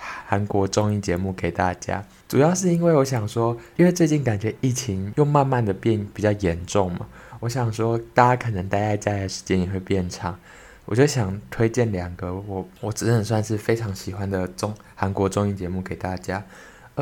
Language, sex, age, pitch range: Chinese, male, 20-39, 95-115 Hz